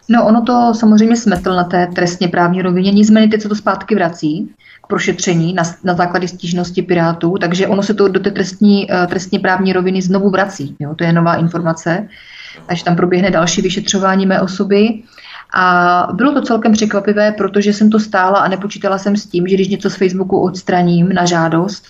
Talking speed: 190 wpm